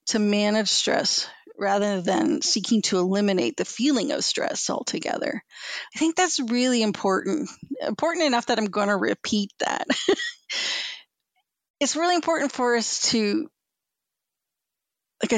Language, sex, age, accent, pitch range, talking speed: English, female, 40-59, American, 205-295 Hz, 125 wpm